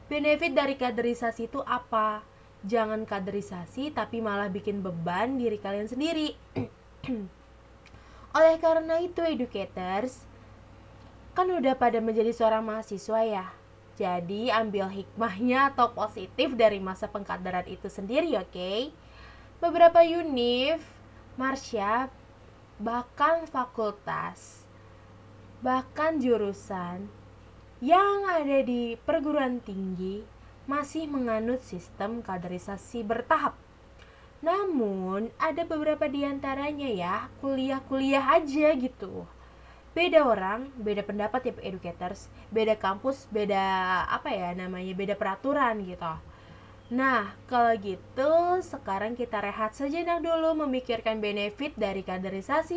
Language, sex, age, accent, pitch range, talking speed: Indonesian, female, 20-39, native, 195-285 Hz, 100 wpm